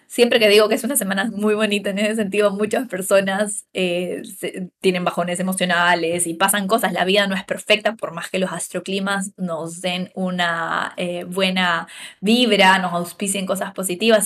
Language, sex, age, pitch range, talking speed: Spanish, female, 20-39, 185-215 Hz, 175 wpm